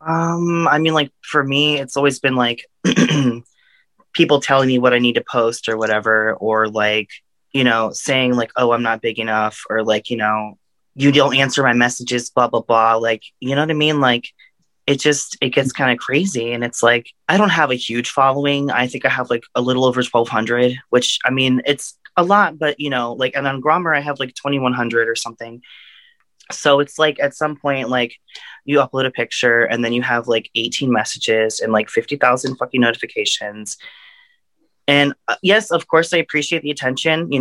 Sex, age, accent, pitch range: male, 20-39, American, 120-145 Hz